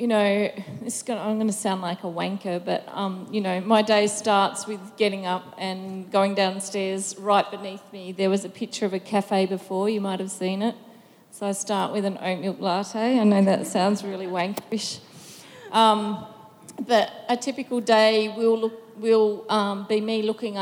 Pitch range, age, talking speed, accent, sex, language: 195-215 Hz, 30-49, 195 wpm, Australian, female, English